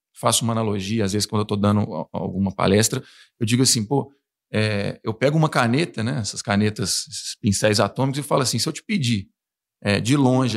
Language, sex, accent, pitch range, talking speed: Portuguese, male, Brazilian, 110-140 Hz, 195 wpm